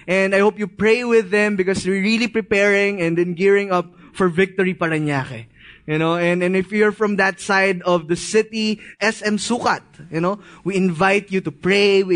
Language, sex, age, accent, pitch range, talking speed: English, male, 20-39, Filipino, 165-210 Hz, 195 wpm